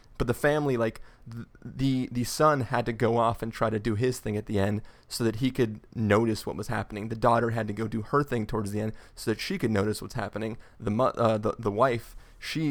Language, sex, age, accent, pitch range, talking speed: English, male, 20-39, American, 105-125 Hz, 245 wpm